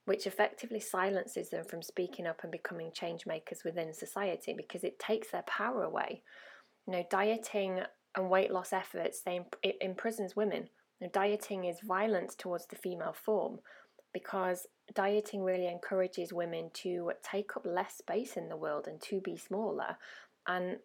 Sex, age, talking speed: female, 20-39, 155 wpm